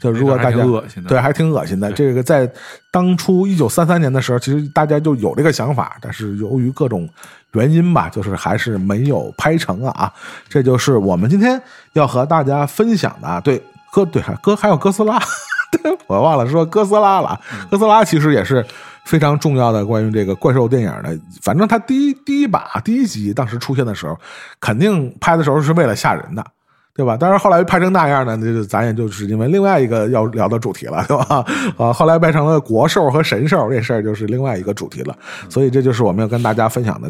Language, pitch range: Chinese, 110-170 Hz